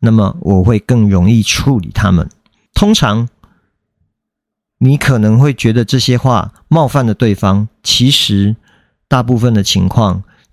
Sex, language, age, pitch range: male, Chinese, 50-69, 105-135 Hz